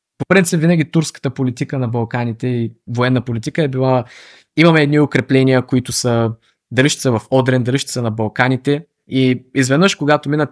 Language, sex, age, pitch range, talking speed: Bulgarian, male, 20-39, 115-135 Hz, 155 wpm